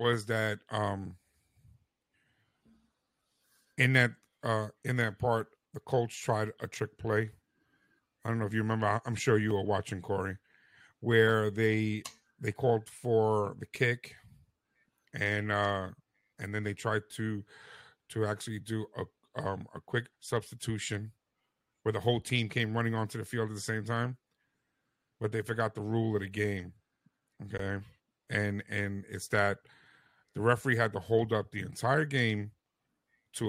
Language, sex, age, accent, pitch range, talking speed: English, male, 50-69, American, 105-120 Hz, 150 wpm